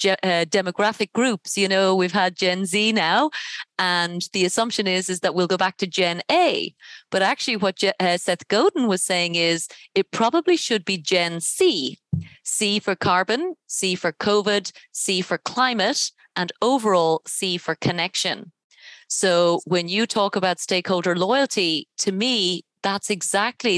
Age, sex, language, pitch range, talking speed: 30-49, female, English, 175-205 Hz, 155 wpm